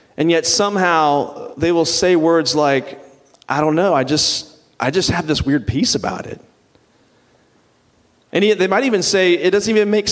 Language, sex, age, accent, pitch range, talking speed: English, male, 40-59, American, 120-165 Hz, 185 wpm